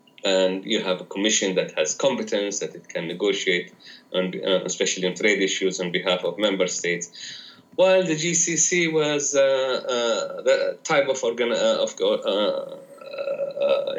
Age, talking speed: 30-49, 155 wpm